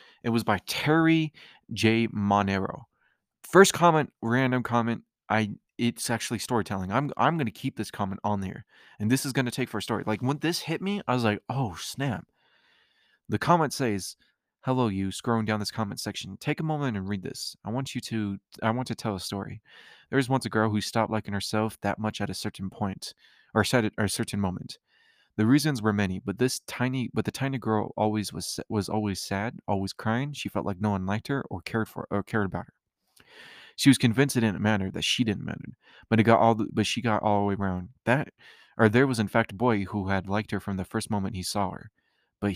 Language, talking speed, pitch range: English, 230 wpm, 100-120 Hz